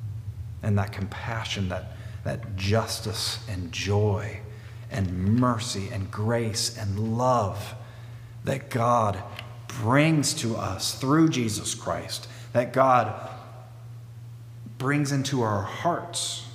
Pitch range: 110-120 Hz